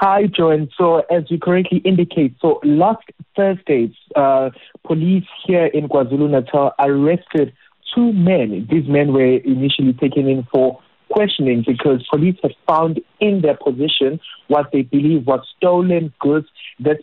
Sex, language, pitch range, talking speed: male, English, 135-175 Hz, 140 wpm